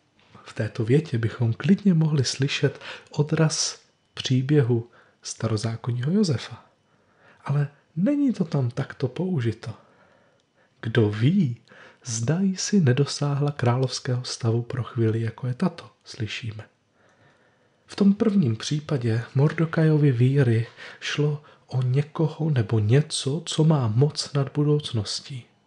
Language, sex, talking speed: Czech, male, 110 wpm